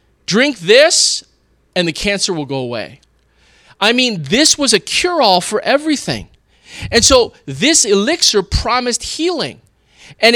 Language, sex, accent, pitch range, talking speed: English, male, American, 145-215 Hz, 135 wpm